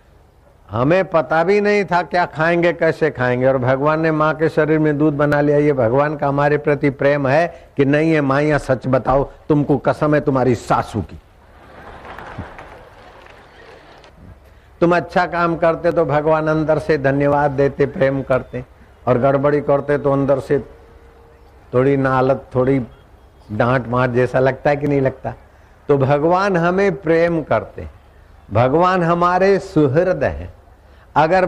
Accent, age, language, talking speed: native, 60-79, Hindi, 145 wpm